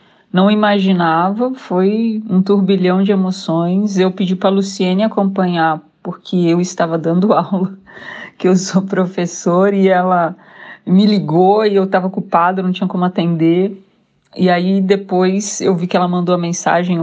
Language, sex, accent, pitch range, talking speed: Portuguese, female, Brazilian, 175-200 Hz, 155 wpm